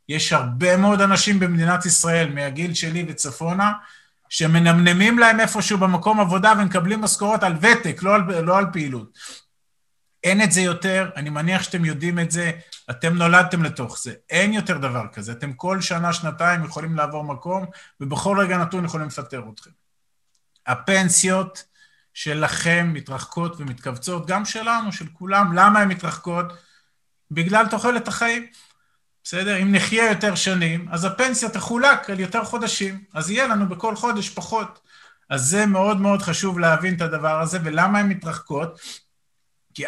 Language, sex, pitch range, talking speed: Hebrew, male, 155-200 Hz, 150 wpm